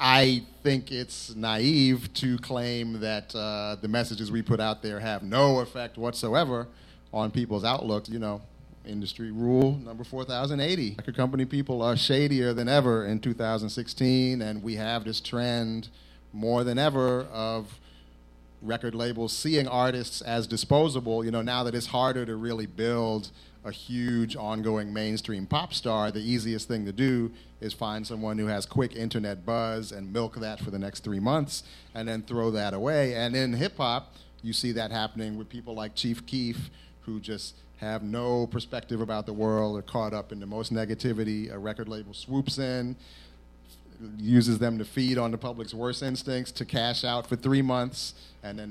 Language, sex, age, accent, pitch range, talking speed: English, male, 40-59, American, 110-125 Hz, 175 wpm